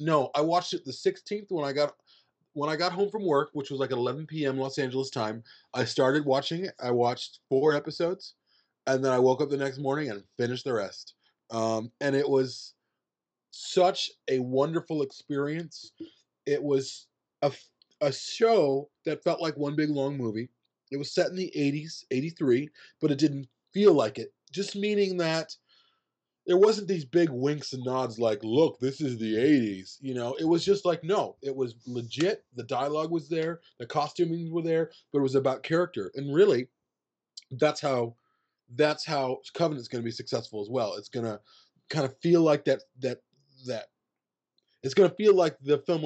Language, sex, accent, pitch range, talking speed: English, male, American, 130-165 Hz, 185 wpm